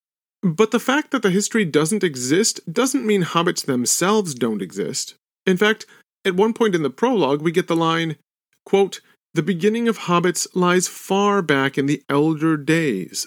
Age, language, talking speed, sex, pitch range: 40-59, English, 170 wpm, male, 150-210 Hz